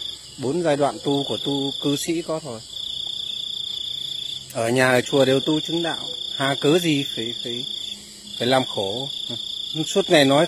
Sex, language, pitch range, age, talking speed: male, Vietnamese, 125-160 Hz, 20-39, 160 wpm